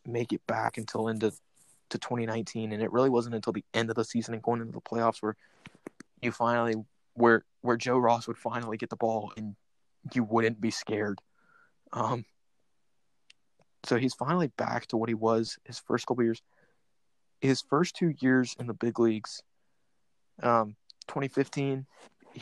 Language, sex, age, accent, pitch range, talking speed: English, male, 20-39, American, 110-120 Hz, 170 wpm